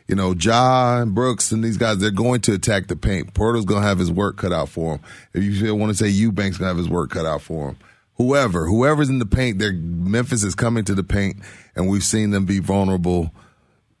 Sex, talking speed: male, 240 wpm